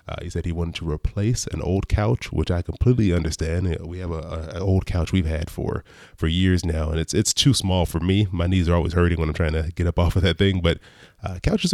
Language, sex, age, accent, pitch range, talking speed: English, male, 20-39, American, 85-100 Hz, 260 wpm